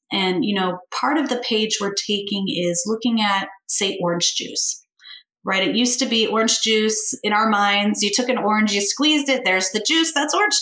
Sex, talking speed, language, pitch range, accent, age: female, 210 wpm, English, 185-245 Hz, American, 30-49